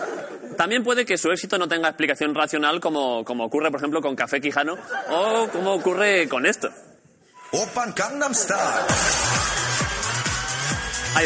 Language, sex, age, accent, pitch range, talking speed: Spanish, male, 20-39, Spanish, 145-205 Hz, 125 wpm